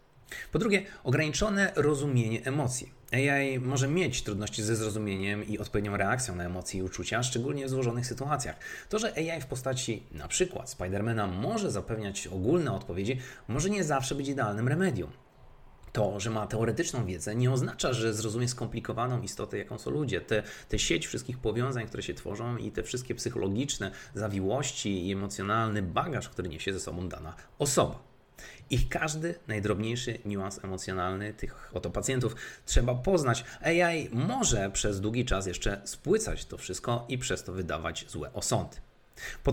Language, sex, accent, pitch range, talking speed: Polish, male, native, 100-135 Hz, 155 wpm